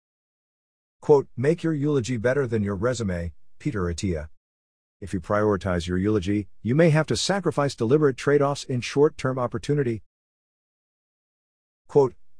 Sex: male